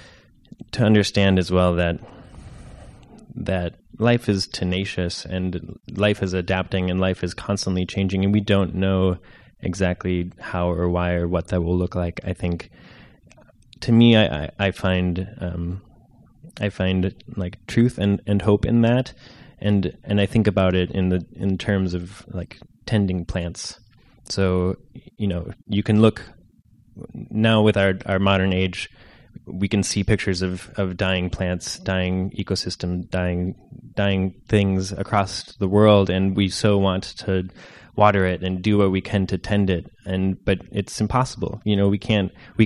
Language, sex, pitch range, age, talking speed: English, male, 90-105 Hz, 20-39, 165 wpm